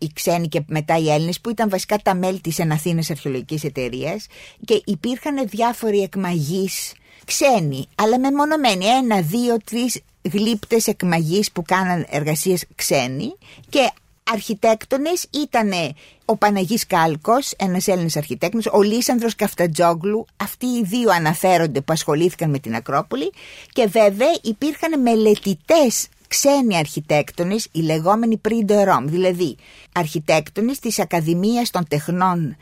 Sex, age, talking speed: female, 50-69, 125 wpm